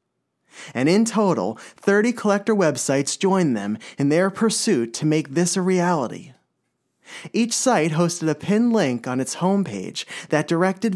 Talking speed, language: 150 wpm, English